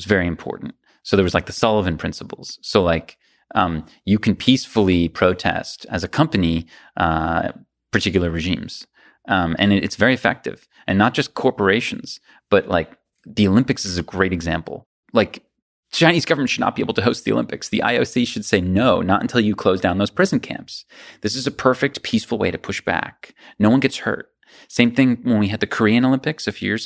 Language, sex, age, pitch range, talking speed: English, male, 30-49, 90-120 Hz, 195 wpm